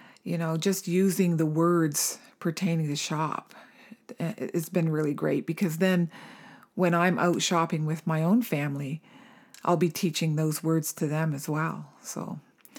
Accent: American